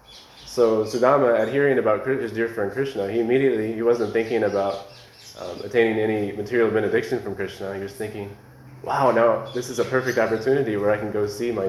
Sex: male